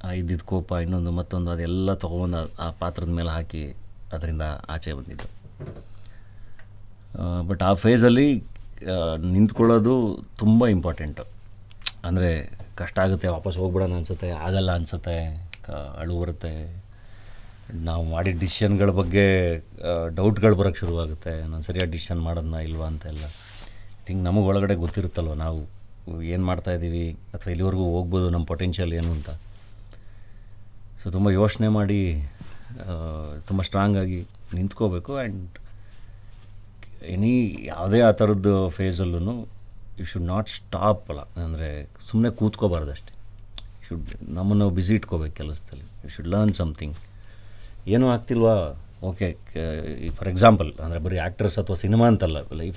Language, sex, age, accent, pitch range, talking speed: Kannada, male, 30-49, native, 85-105 Hz, 100 wpm